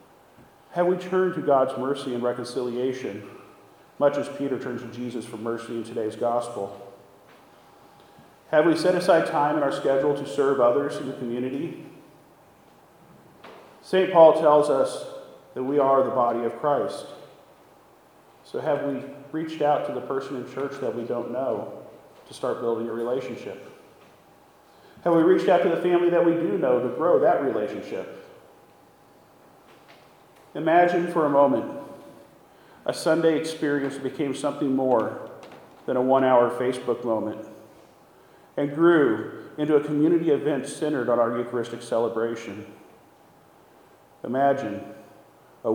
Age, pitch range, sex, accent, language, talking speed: 40-59, 120-160 Hz, male, American, English, 140 wpm